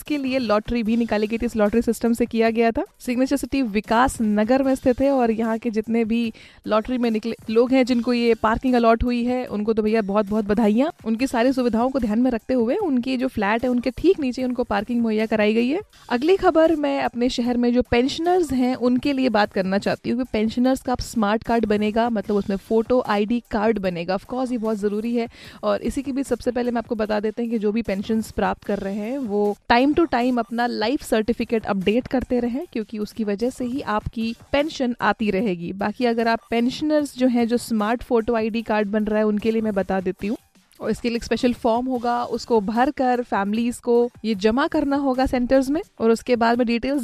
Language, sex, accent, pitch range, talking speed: Hindi, female, native, 220-255 Hz, 225 wpm